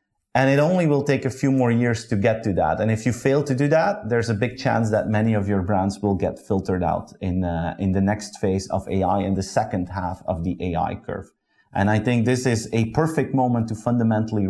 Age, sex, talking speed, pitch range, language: 30-49, male, 245 wpm, 100-125 Hz, English